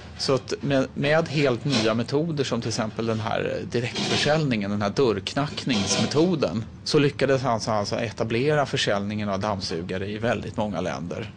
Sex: male